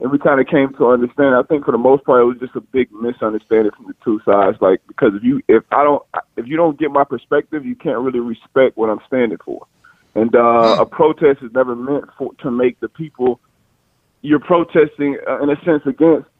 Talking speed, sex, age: 230 wpm, male, 20-39